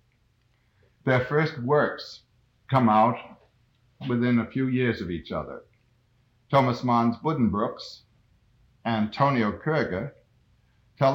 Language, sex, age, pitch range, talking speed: English, male, 60-79, 110-130 Hz, 100 wpm